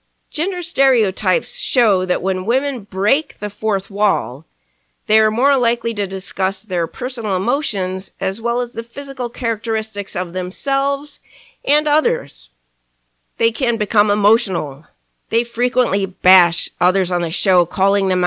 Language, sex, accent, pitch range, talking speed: English, female, American, 170-225 Hz, 140 wpm